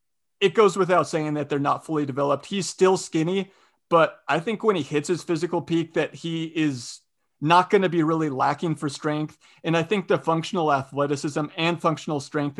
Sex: male